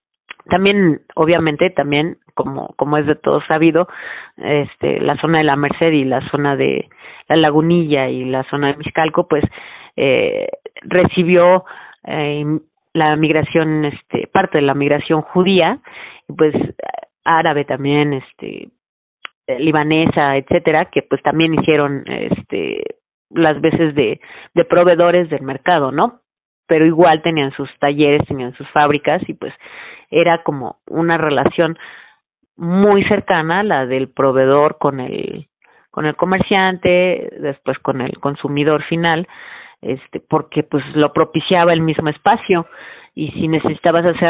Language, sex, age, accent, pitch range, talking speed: Spanish, female, 30-49, Mexican, 145-175 Hz, 135 wpm